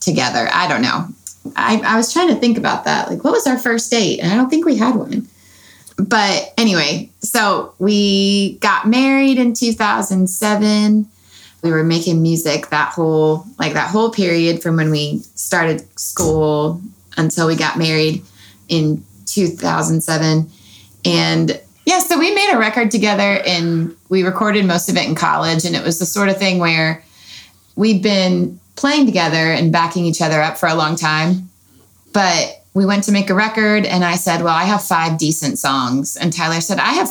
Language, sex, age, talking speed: English, female, 20-39, 180 wpm